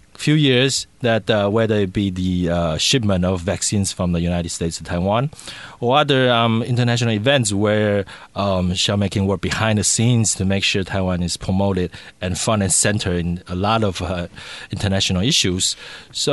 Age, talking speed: 30-49, 180 wpm